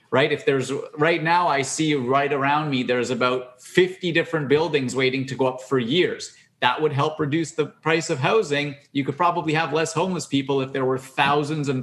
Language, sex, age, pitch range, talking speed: English, male, 30-49, 130-155 Hz, 210 wpm